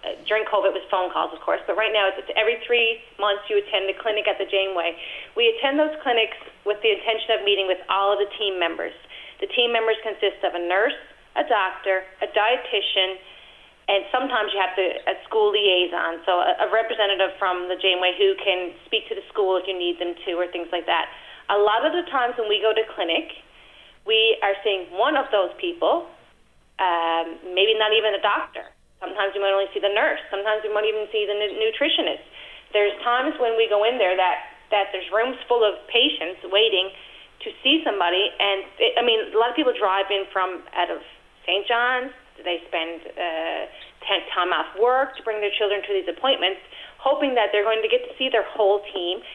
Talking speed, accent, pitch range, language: 210 wpm, American, 190-240 Hz, English